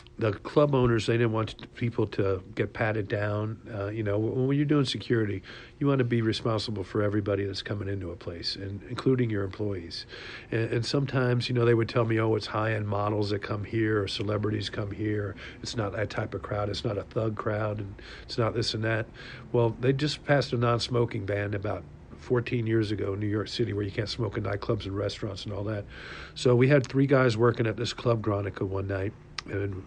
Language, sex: English, male